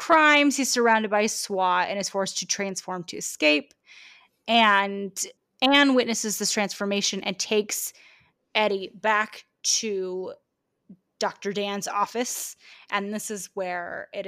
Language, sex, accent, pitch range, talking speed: English, female, American, 185-240 Hz, 125 wpm